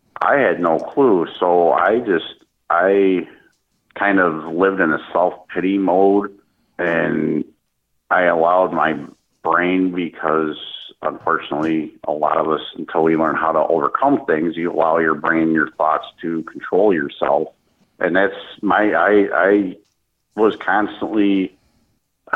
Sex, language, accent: male, English, American